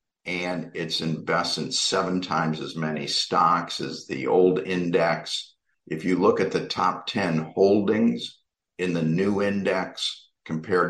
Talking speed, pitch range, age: 140 wpm, 80-90 Hz, 50-69